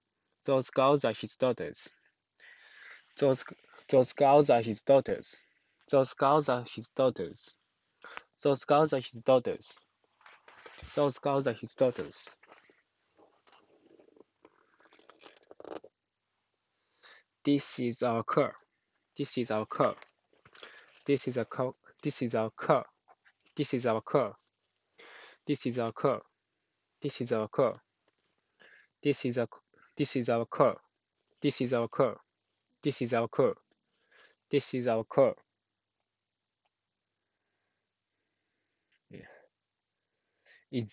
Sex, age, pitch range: male, 20-39, 120-145 Hz